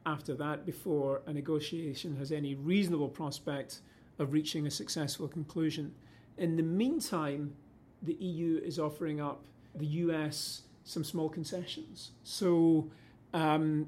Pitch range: 140-165 Hz